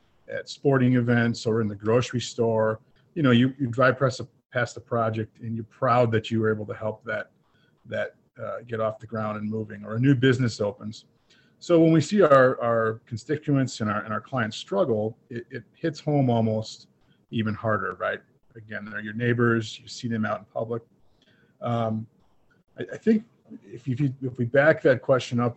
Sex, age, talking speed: male, 40-59, 195 wpm